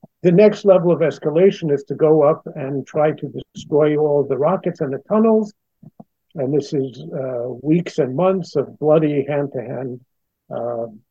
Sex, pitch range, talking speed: male, 135-170 Hz, 160 wpm